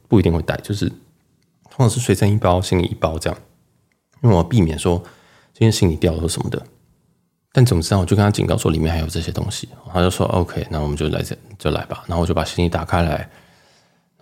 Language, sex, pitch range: Chinese, male, 90-125 Hz